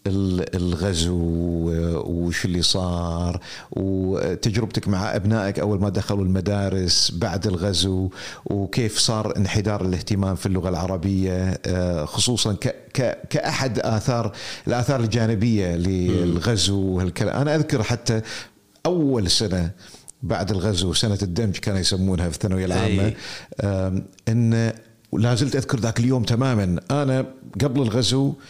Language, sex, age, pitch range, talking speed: Arabic, male, 50-69, 95-125 Hz, 105 wpm